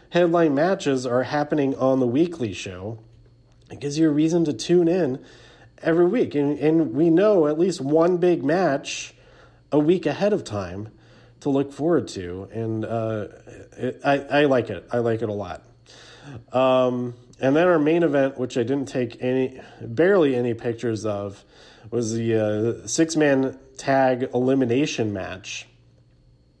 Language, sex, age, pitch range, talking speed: English, male, 40-59, 110-140 Hz, 155 wpm